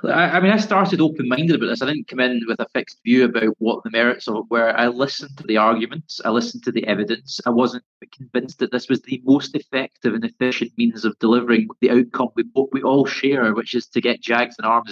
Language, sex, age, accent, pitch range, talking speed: English, male, 30-49, British, 115-135 Hz, 235 wpm